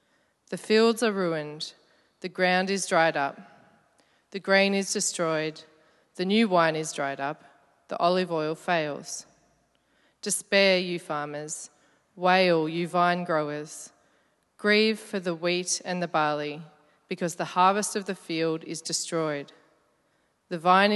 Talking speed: 135 wpm